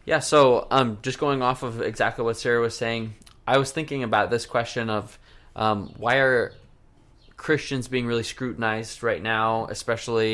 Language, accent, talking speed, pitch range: English, American, 170 wpm, 110-125 Hz